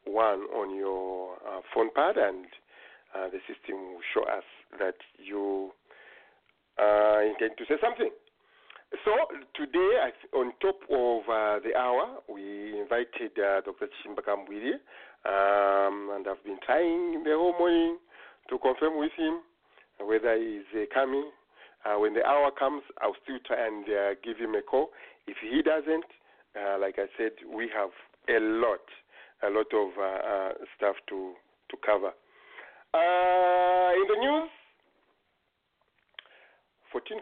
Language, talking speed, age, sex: English, 145 wpm, 50-69, male